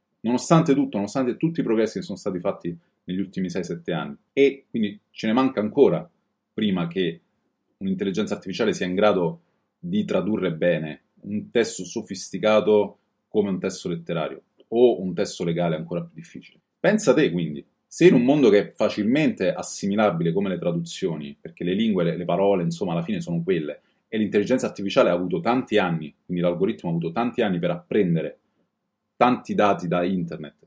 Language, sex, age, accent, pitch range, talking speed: Italian, male, 30-49, native, 90-125 Hz, 170 wpm